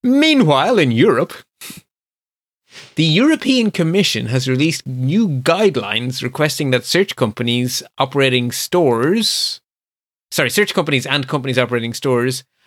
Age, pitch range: 30-49, 120-165 Hz